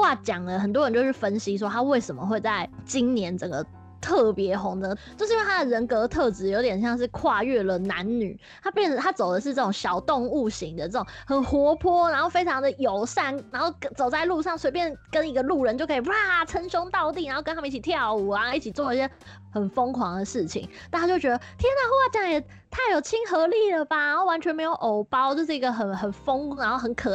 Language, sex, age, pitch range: Chinese, female, 20-39, 205-290 Hz